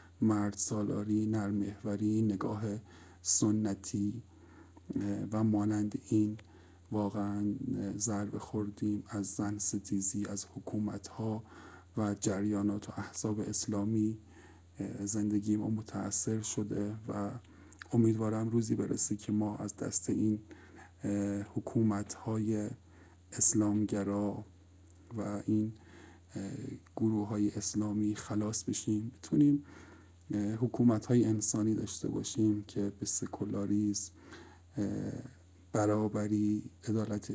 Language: English